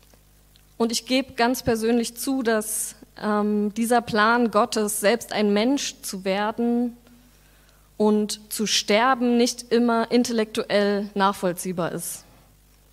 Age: 20-39